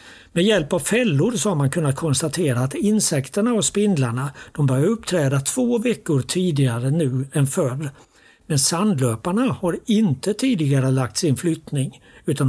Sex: male